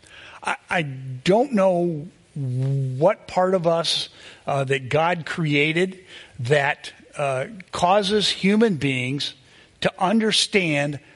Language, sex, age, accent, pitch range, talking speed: English, male, 50-69, American, 130-170 Hz, 95 wpm